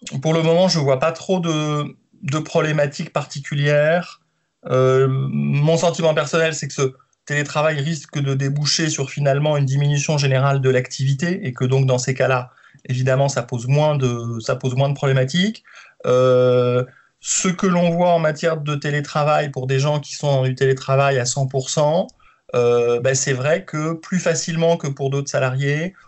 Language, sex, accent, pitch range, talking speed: French, male, French, 130-150 Hz, 175 wpm